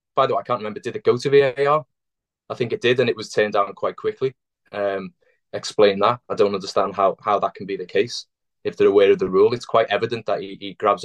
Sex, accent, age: male, British, 20-39